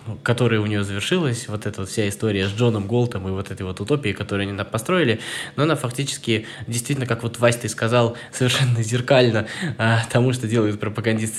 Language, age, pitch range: Russian, 20-39, 105-125 Hz